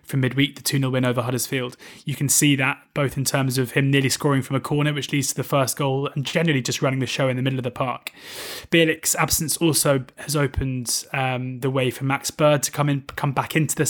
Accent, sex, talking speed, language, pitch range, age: British, male, 240 wpm, English, 130-150 Hz, 20-39